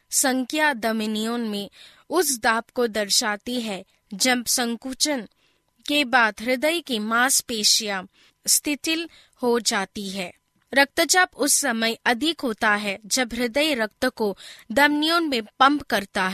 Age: 20-39